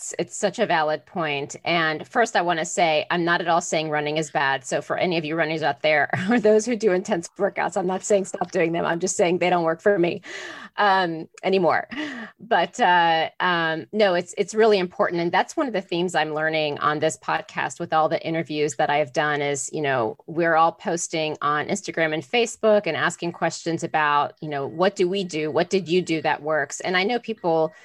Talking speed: 225 wpm